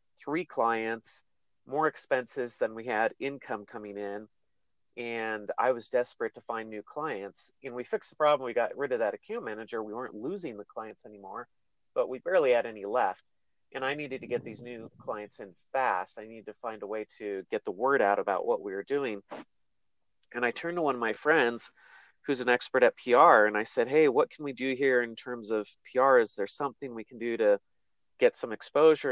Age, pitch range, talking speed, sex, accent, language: 30-49, 115-155 Hz, 215 wpm, male, American, English